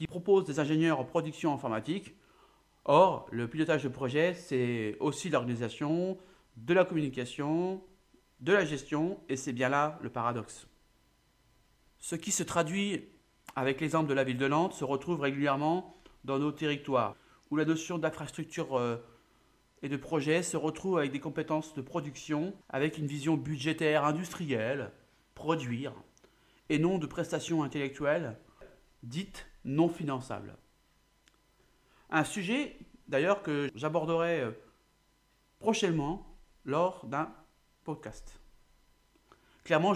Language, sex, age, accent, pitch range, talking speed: French, male, 40-59, French, 135-170 Hz, 125 wpm